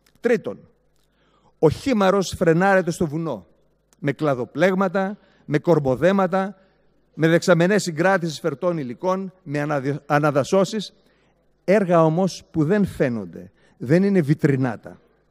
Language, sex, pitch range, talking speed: Greek, male, 140-185 Hz, 100 wpm